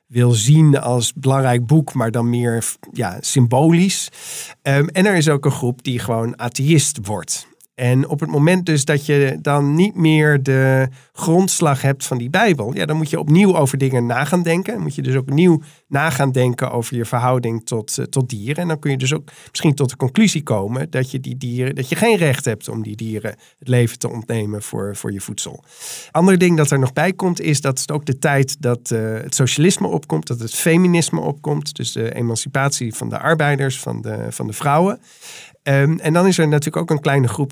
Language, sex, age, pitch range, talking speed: Dutch, male, 50-69, 120-155 Hz, 210 wpm